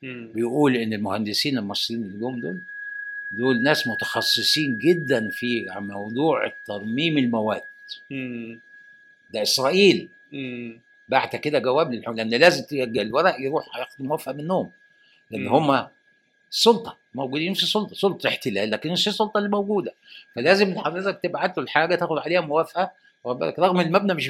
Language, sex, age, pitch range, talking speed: Arabic, male, 60-79, 120-200 Hz, 130 wpm